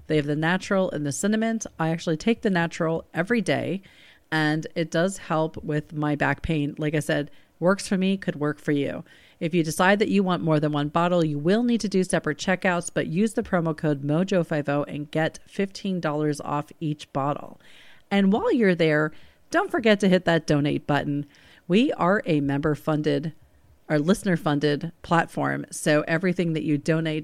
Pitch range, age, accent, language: 150-195 Hz, 40-59, American, English